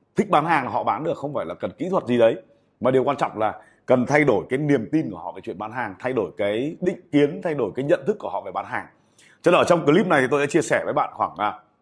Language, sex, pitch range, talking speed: Vietnamese, male, 120-165 Hz, 295 wpm